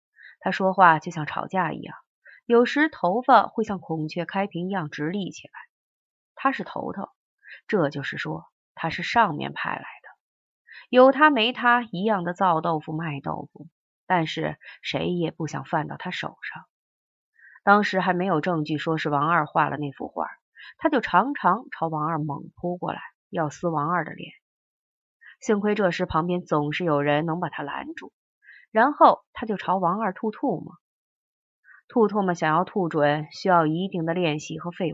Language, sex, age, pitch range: Chinese, female, 30-49, 155-220 Hz